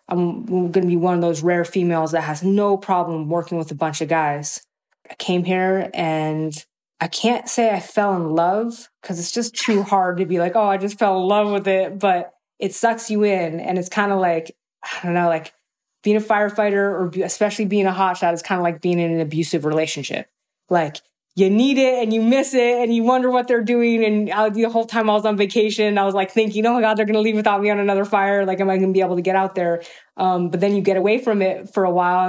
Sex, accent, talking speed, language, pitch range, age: female, American, 255 wpm, English, 170-215 Hz, 20-39